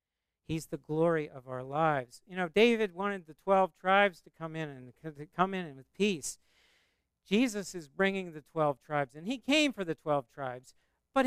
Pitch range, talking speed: 150-210 Hz, 195 wpm